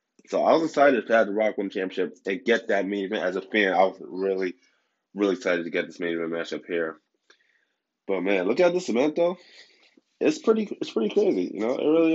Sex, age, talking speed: male, 20-39, 220 wpm